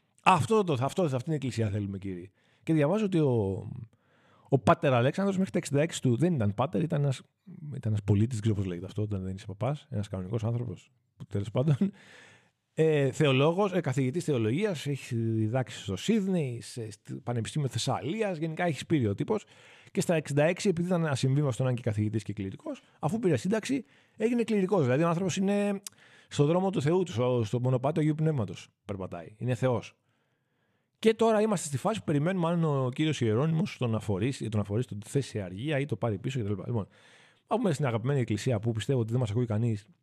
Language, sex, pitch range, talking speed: Greek, male, 110-155 Hz, 185 wpm